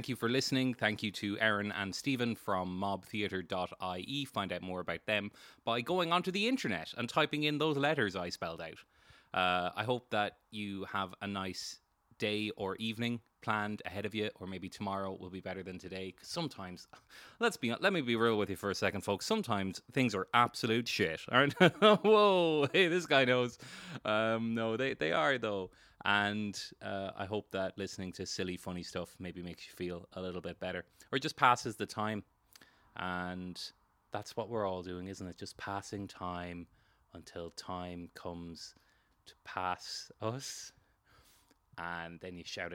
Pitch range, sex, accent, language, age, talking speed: 95-135 Hz, male, Irish, English, 20-39, 180 wpm